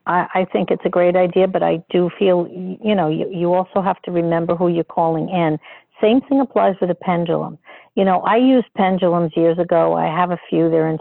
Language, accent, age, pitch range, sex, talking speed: English, American, 50-69, 165-230 Hz, female, 220 wpm